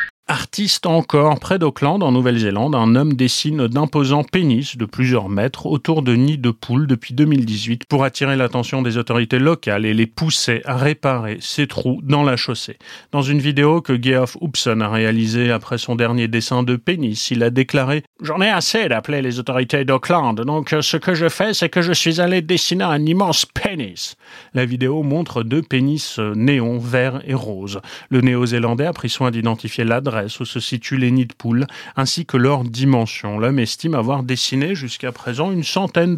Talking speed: 185 wpm